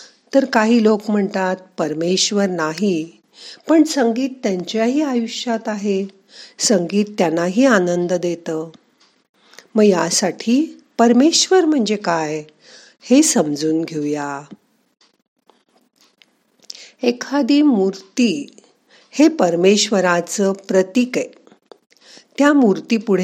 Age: 50-69